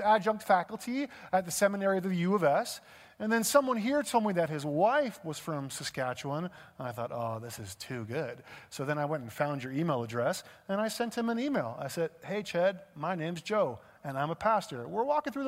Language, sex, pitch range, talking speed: English, male, 185-250 Hz, 230 wpm